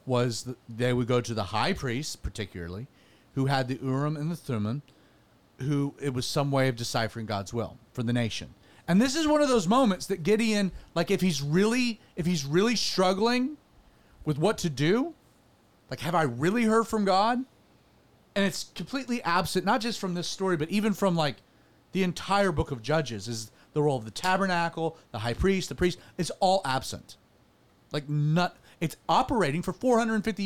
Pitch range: 135-220 Hz